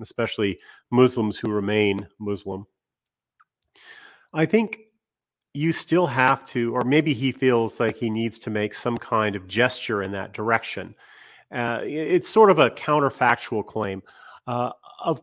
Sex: male